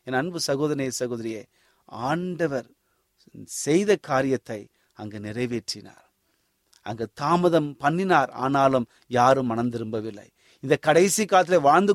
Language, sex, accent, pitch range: Tamil, male, native, 125-195 Hz